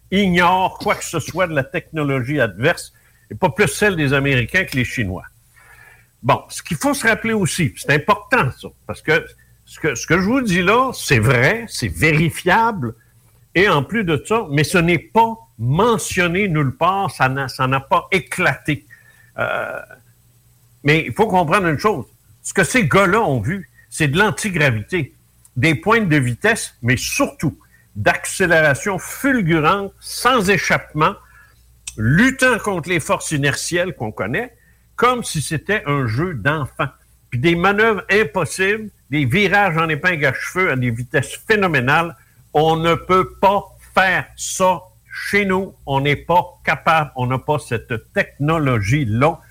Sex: male